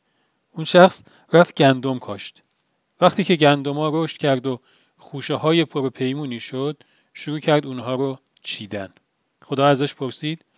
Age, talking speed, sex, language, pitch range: 40-59, 135 wpm, male, Persian, 130-155 Hz